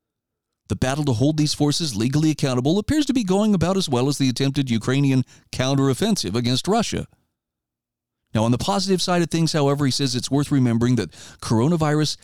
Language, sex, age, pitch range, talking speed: English, male, 40-59, 120-155 Hz, 180 wpm